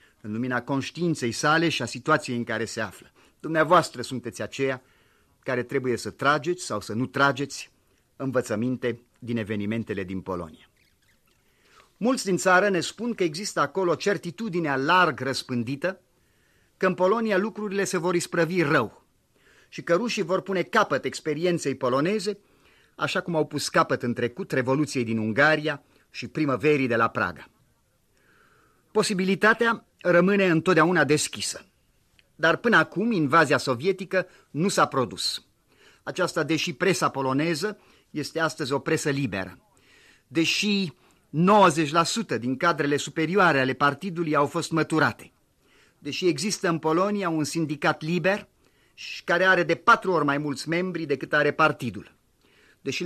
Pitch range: 135-180 Hz